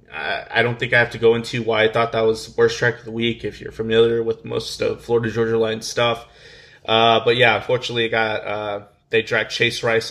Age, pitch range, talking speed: 20-39, 110-125 Hz, 235 wpm